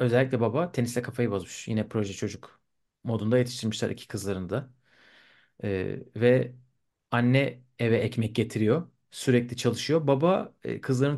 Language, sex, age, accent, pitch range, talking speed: Turkish, male, 40-59, native, 110-140 Hz, 125 wpm